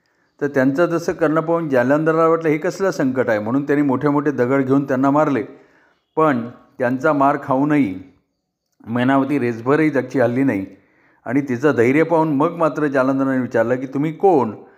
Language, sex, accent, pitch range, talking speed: Marathi, male, native, 125-150 Hz, 165 wpm